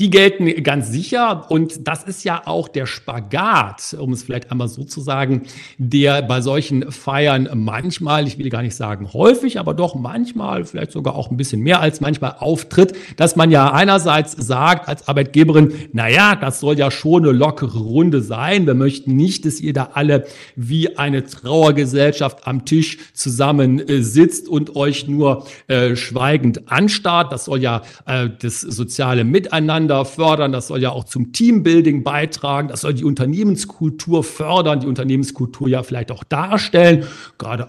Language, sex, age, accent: German, male, 50-69, German